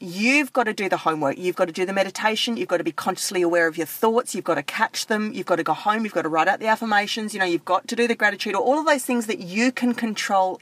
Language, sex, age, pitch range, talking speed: English, female, 40-59, 190-245 Hz, 310 wpm